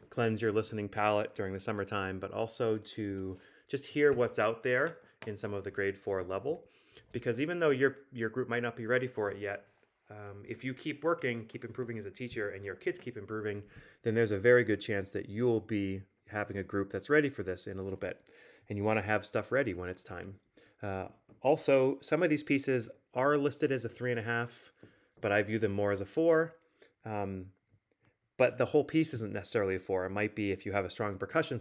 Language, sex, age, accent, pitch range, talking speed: English, male, 30-49, American, 100-125 Hz, 225 wpm